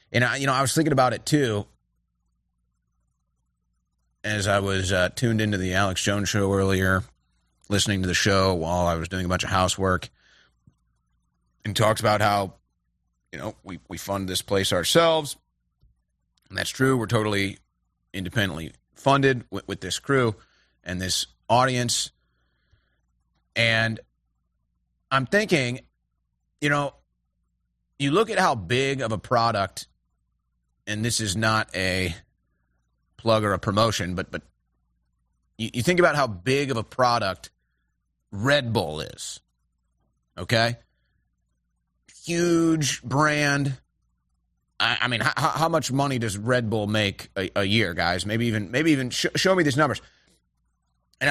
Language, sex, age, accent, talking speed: English, male, 30-49, American, 145 wpm